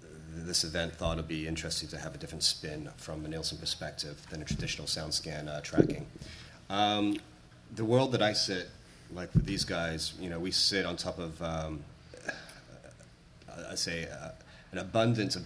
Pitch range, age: 80-90 Hz, 30-49